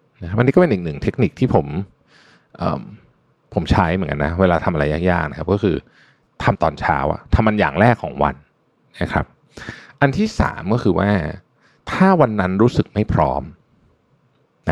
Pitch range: 90-125 Hz